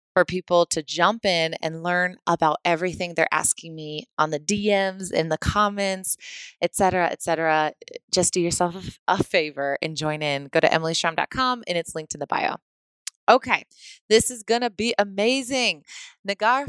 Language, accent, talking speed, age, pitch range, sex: English, American, 170 wpm, 20-39, 160-205 Hz, female